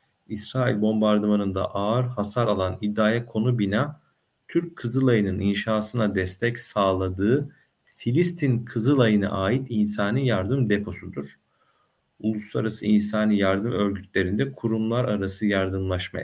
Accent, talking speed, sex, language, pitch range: native, 95 wpm, male, Turkish, 100-125 Hz